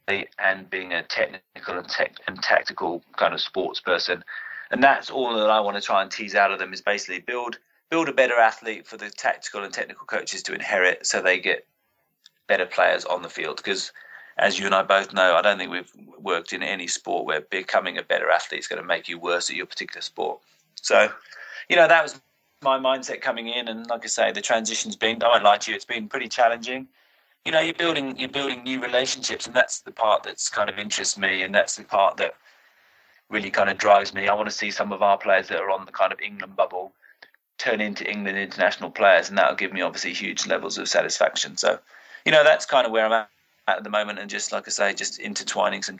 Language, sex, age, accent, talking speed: English, male, 30-49, British, 235 wpm